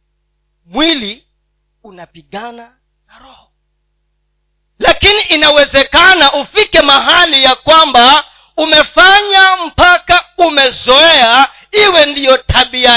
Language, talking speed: Swahili, 75 wpm